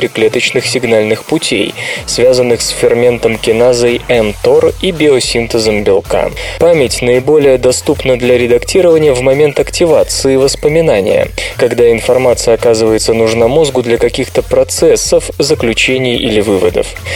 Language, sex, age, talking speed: Russian, male, 20-39, 110 wpm